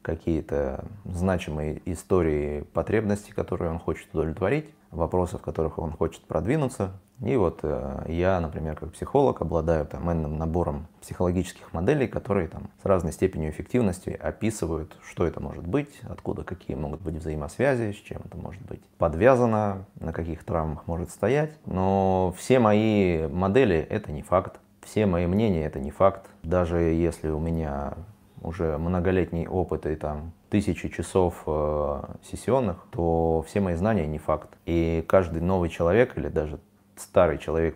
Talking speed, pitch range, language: 150 wpm, 80-100 Hz, Russian